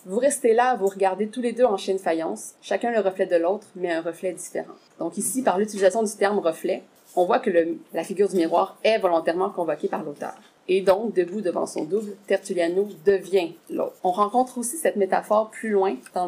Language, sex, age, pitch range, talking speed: French, female, 30-49, 185-225 Hz, 215 wpm